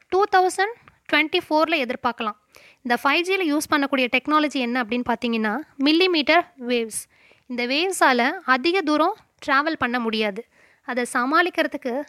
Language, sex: Tamil, female